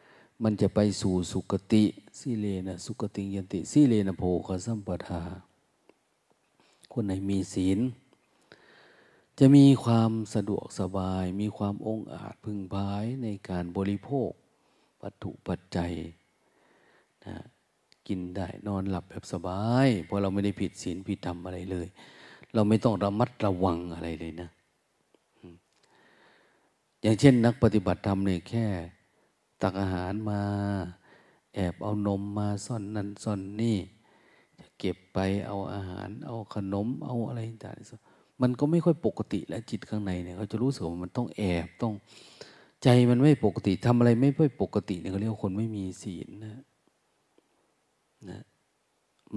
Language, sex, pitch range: Thai, male, 95-110 Hz